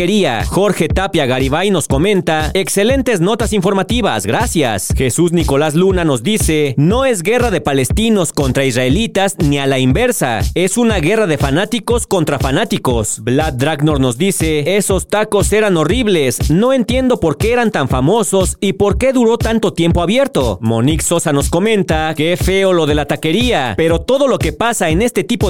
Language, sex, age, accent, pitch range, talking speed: Spanish, male, 40-59, Mexican, 150-210 Hz, 170 wpm